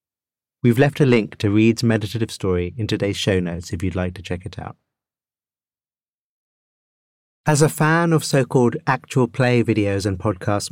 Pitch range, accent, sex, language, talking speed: 105-130 Hz, British, male, English, 170 wpm